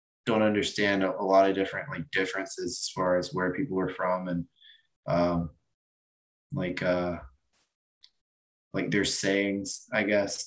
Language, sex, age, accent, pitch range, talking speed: English, male, 20-39, American, 90-105 Hz, 140 wpm